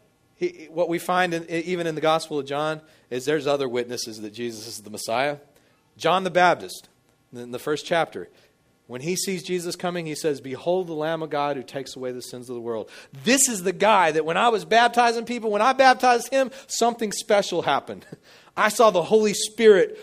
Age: 40-59